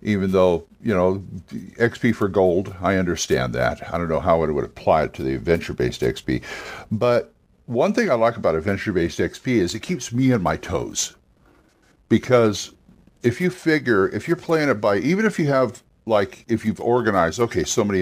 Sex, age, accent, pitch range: male, 60-79, American, 100-130 Hz